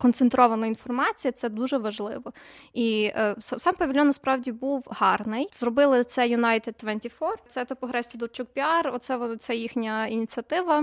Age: 20-39